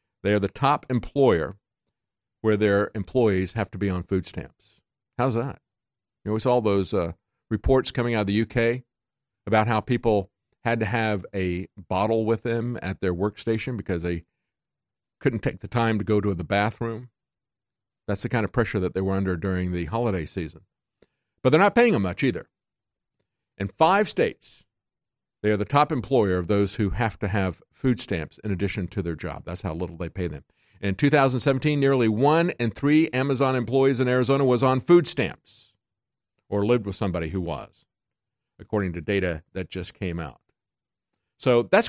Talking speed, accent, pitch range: 185 wpm, American, 95-125 Hz